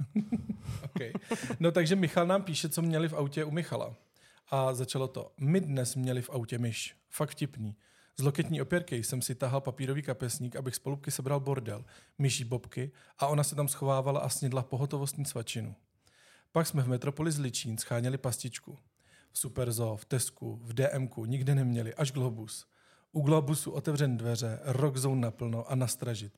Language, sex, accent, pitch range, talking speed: Czech, male, native, 120-145 Hz, 160 wpm